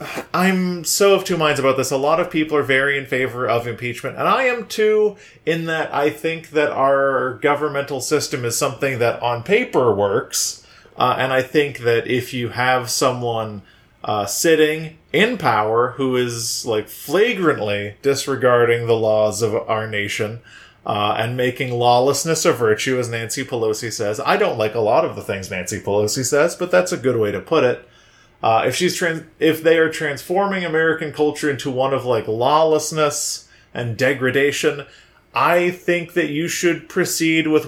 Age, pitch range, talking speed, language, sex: 30-49, 125-160 Hz, 175 wpm, English, male